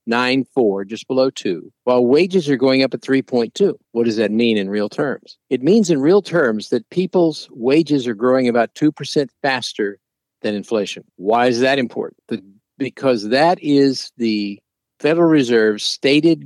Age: 50-69